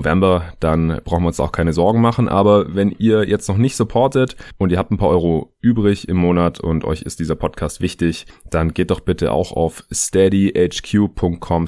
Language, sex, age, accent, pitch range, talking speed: German, male, 30-49, German, 80-100 Hz, 195 wpm